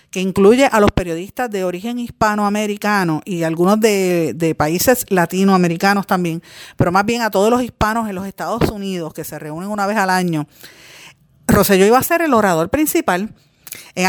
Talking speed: 180 wpm